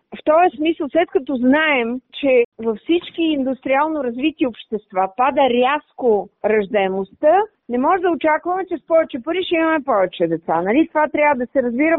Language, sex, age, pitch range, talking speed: Bulgarian, female, 40-59, 235-315 Hz, 165 wpm